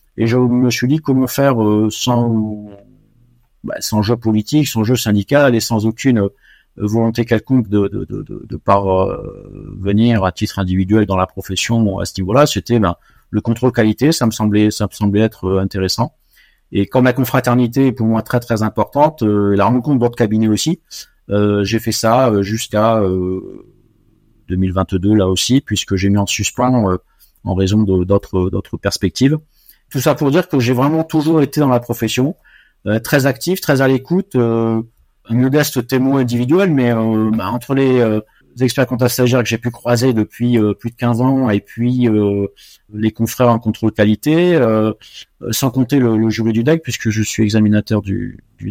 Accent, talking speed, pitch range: French, 175 wpm, 105-125 Hz